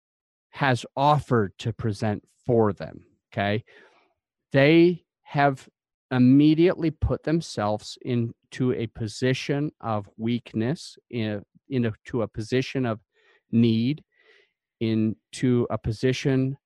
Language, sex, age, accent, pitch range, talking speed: English, male, 40-59, American, 120-150 Hz, 90 wpm